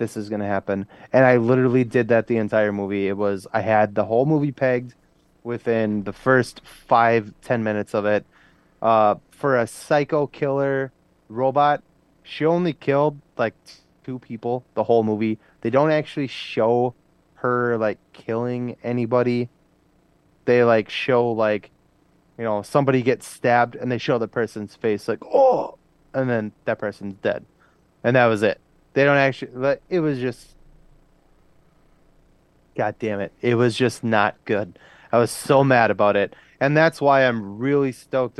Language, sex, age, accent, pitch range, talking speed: English, male, 20-39, American, 105-135 Hz, 165 wpm